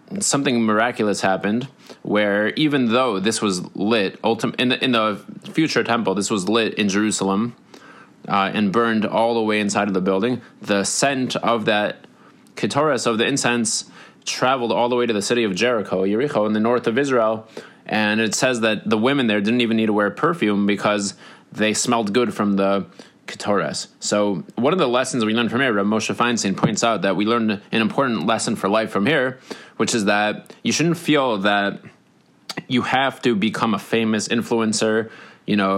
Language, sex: English, male